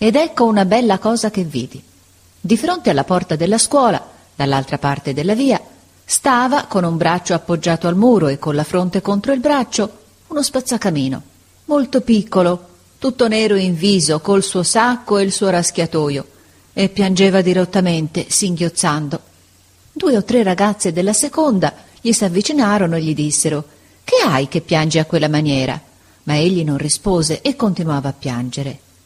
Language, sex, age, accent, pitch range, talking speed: Italian, female, 40-59, native, 150-220 Hz, 155 wpm